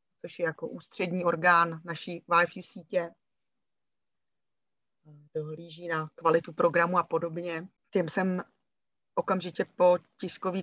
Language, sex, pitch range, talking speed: Czech, female, 170-190 Hz, 105 wpm